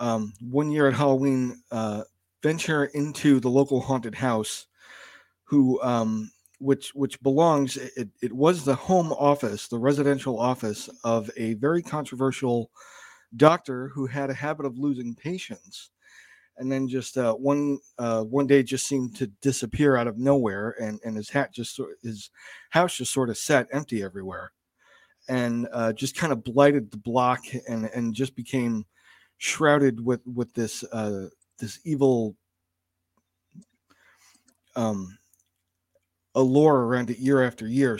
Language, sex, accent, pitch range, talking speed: English, male, American, 115-140 Hz, 145 wpm